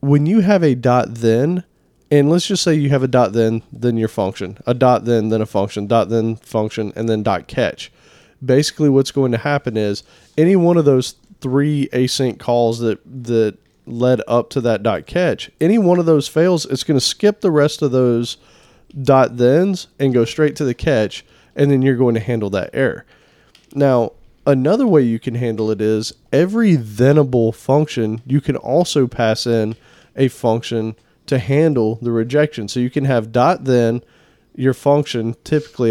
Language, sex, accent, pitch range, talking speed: English, male, American, 115-145 Hz, 185 wpm